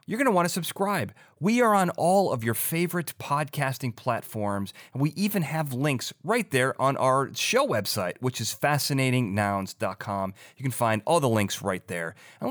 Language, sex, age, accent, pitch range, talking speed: English, male, 30-49, American, 105-145 Hz, 180 wpm